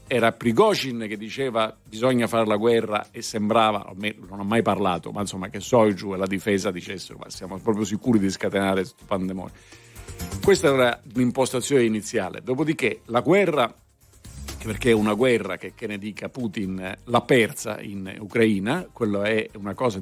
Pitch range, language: 105-125 Hz, Italian